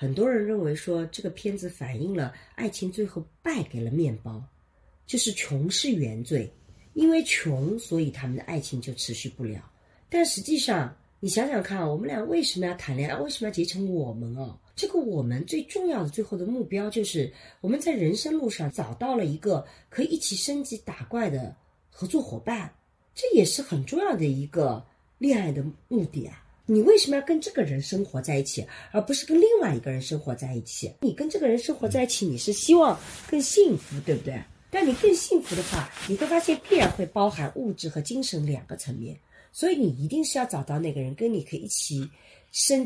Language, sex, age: Chinese, female, 40-59